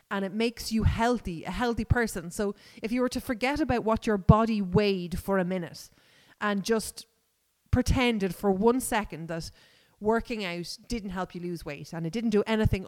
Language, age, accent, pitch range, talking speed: English, 30-49, Irish, 190-245 Hz, 190 wpm